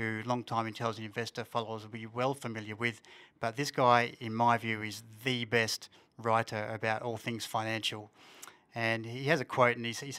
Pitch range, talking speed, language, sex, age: 110-130 Hz, 190 wpm, English, male, 30-49